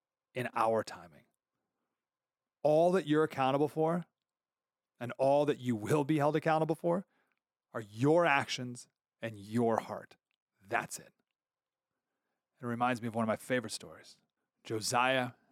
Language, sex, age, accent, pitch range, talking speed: English, male, 30-49, American, 110-145 Hz, 135 wpm